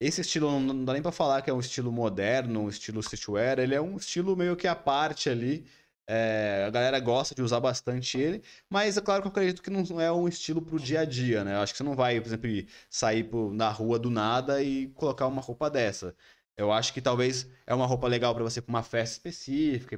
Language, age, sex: Portuguese, 20-39, male